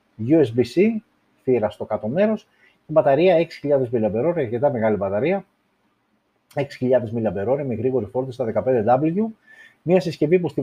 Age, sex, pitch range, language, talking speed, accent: 30-49, male, 110-155 Hz, Greek, 130 wpm, native